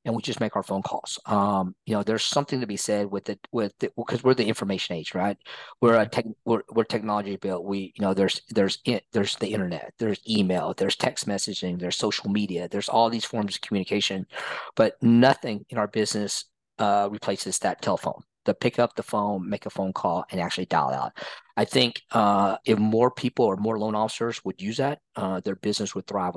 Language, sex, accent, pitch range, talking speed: English, male, American, 100-115 Hz, 215 wpm